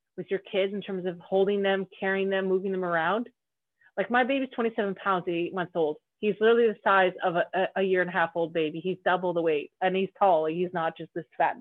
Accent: American